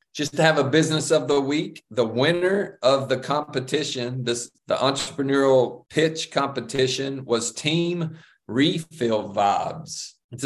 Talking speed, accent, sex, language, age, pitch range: 125 wpm, American, male, English, 40-59, 125-150 Hz